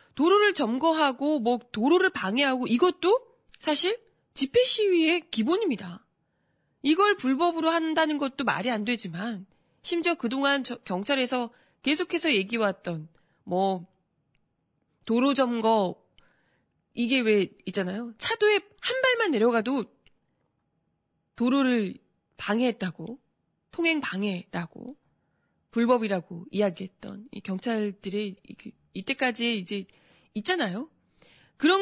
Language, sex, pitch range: Korean, female, 210-310 Hz